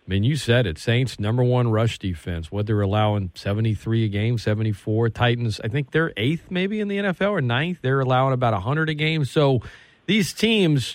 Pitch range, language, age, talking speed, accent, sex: 110-145 Hz, English, 40-59, 205 wpm, American, male